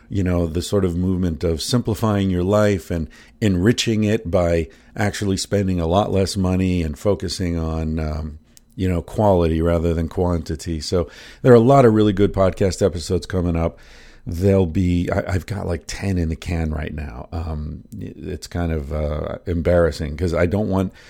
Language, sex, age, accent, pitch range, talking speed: English, male, 50-69, American, 85-105 Hz, 180 wpm